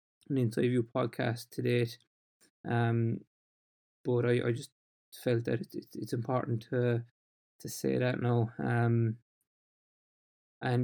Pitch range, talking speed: 120-130 Hz, 120 wpm